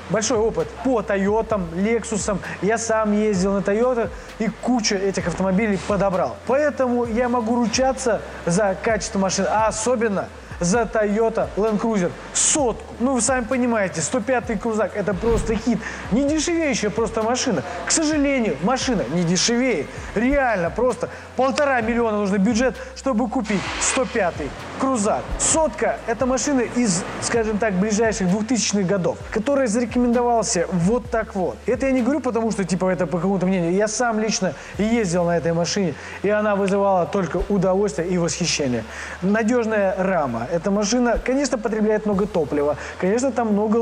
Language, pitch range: Russian, 185-240 Hz